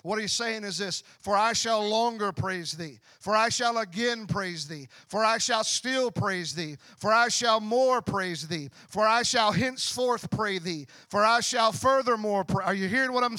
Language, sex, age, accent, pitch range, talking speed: English, male, 40-59, American, 220-265 Hz, 200 wpm